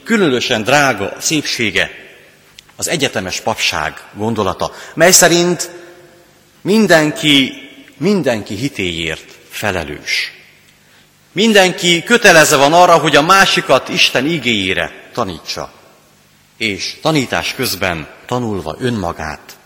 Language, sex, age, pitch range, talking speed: Hungarian, male, 30-49, 110-175 Hz, 85 wpm